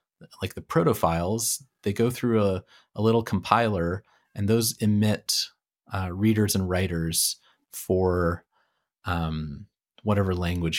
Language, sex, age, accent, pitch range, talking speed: English, male, 30-49, American, 85-110 Hz, 120 wpm